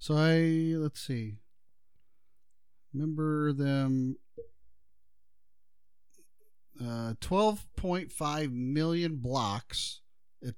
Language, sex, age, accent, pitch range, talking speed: English, male, 40-59, American, 115-150 Hz, 60 wpm